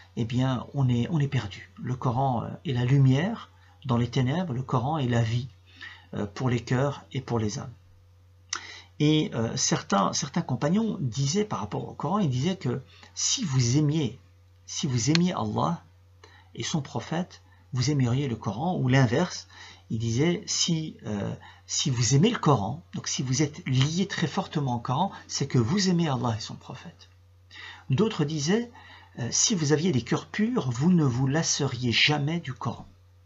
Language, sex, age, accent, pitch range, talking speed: French, male, 40-59, French, 105-150 Hz, 175 wpm